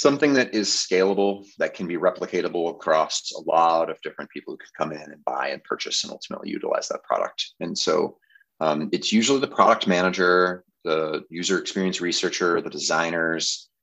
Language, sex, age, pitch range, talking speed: English, male, 30-49, 85-140 Hz, 180 wpm